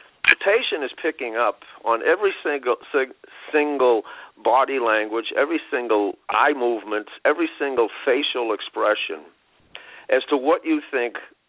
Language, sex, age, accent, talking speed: English, male, 50-69, American, 130 wpm